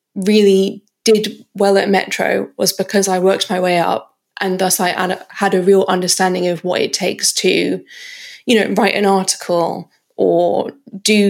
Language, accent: English, British